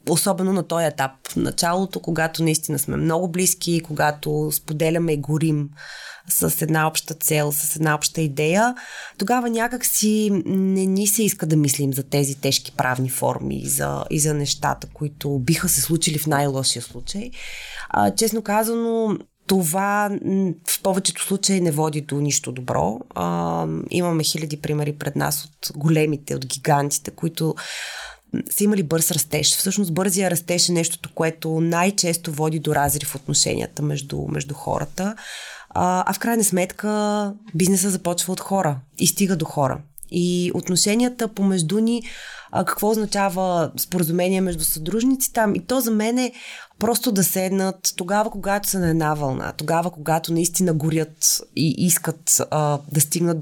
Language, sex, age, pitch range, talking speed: Bulgarian, female, 20-39, 150-195 Hz, 150 wpm